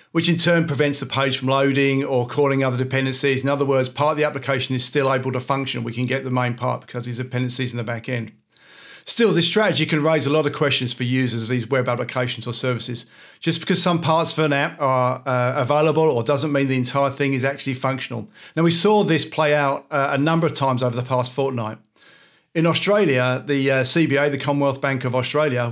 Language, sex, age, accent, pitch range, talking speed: English, male, 50-69, British, 130-150 Hz, 225 wpm